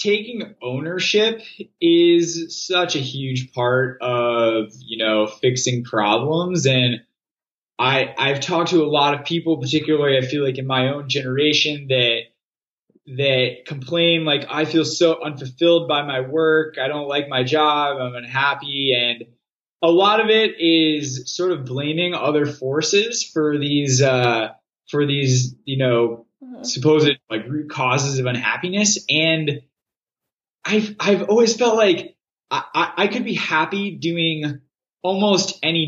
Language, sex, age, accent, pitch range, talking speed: English, male, 20-39, American, 130-165 Hz, 145 wpm